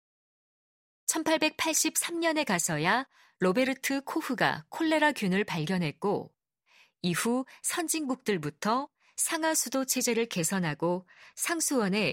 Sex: female